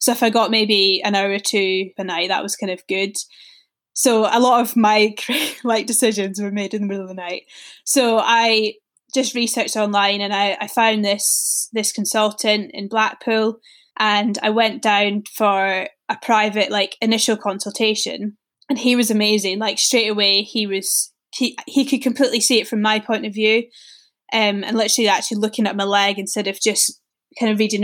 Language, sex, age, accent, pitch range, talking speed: English, female, 10-29, British, 200-230 Hz, 190 wpm